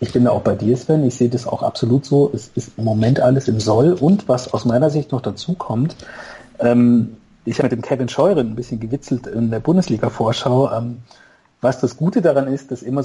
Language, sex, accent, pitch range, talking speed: German, male, German, 120-140 Hz, 225 wpm